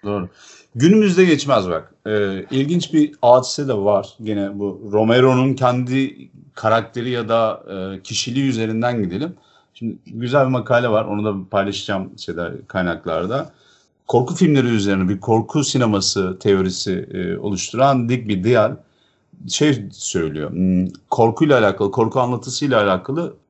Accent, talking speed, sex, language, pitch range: native, 125 wpm, male, Turkish, 105-145 Hz